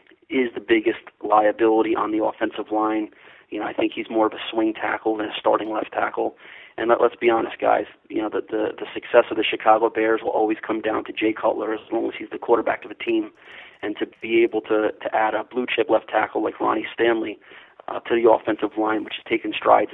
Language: English